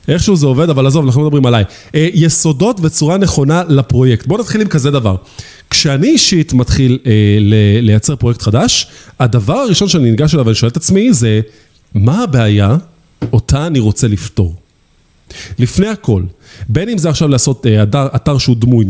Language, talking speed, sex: Hebrew, 165 wpm, male